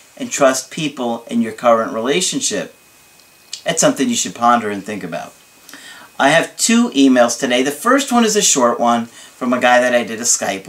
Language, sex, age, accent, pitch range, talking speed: English, male, 40-59, American, 125-185 Hz, 195 wpm